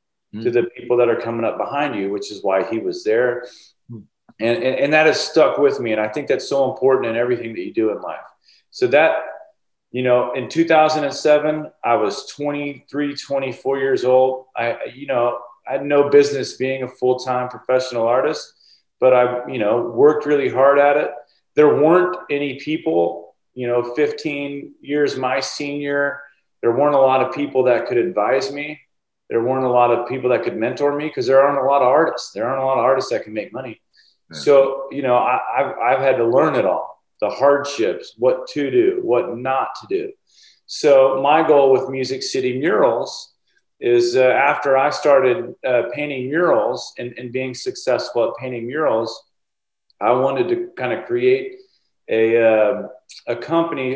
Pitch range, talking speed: 125-150 Hz, 185 wpm